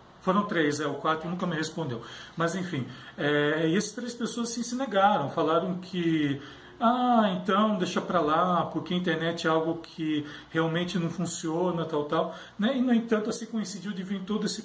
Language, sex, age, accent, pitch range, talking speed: Portuguese, male, 40-59, Brazilian, 150-195 Hz, 190 wpm